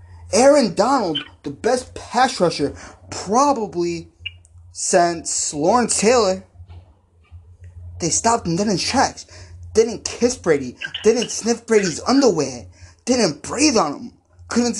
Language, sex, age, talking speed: English, male, 20-39, 110 wpm